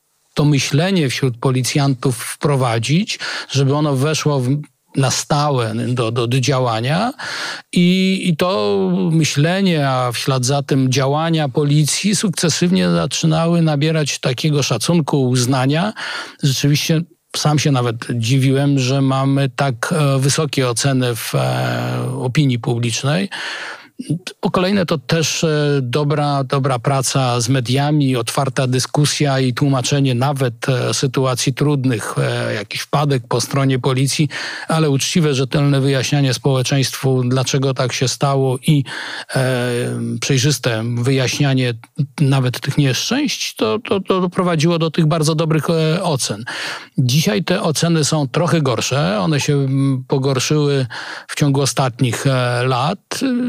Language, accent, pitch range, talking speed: Polish, native, 130-160 Hz, 110 wpm